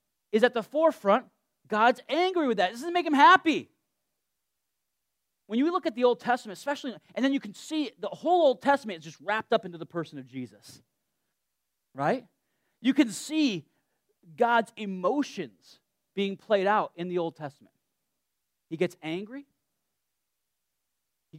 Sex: male